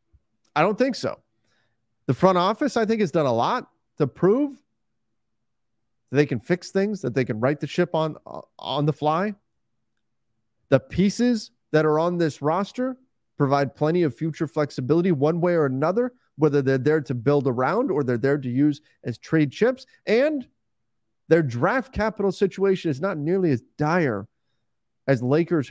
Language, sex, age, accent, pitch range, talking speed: English, male, 30-49, American, 115-165 Hz, 170 wpm